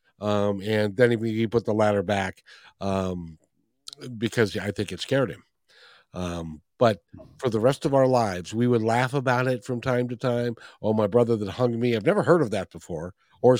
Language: English